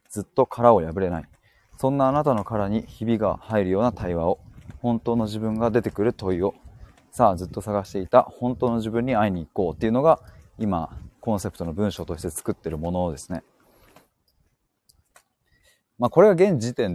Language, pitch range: Japanese, 90-125 Hz